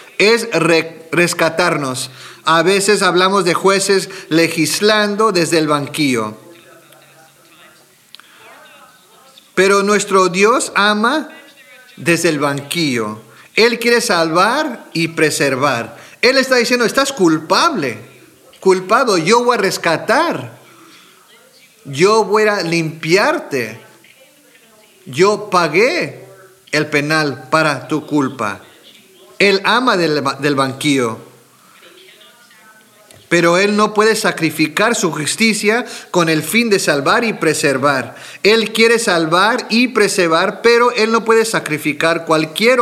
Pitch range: 160-220 Hz